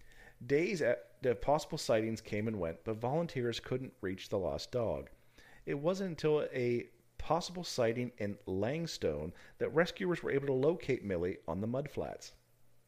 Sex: male